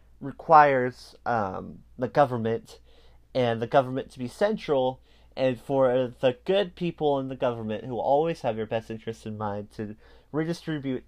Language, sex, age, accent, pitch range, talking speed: English, male, 30-49, American, 110-150 Hz, 150 wpm